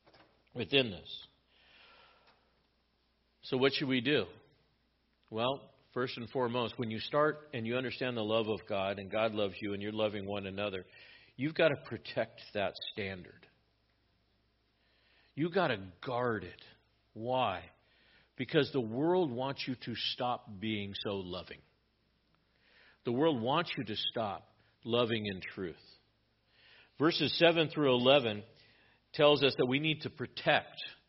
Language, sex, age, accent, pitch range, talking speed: English, male, 50-69, American, 115-155 Hz, 140 wpm